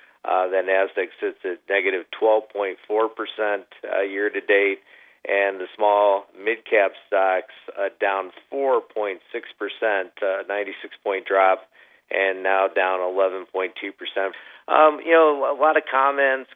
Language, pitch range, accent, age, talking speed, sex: English, 95-120 Hz, American, 50-69, 110 wpm, male